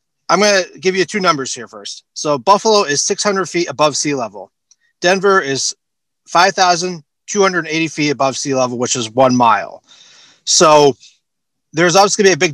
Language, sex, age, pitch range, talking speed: English, male, 30-49, 135-170 Hz, 170 wpm